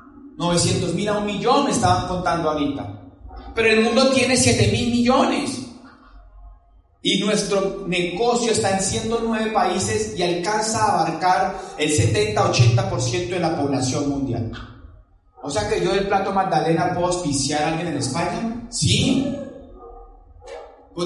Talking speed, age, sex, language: 135 wpm, 30-49, male, Spanish